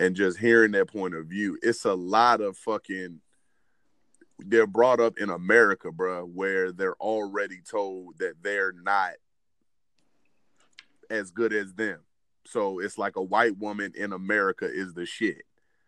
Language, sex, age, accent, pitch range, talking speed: English, male, 30-49, American, 95-115 Hz, 150 wpm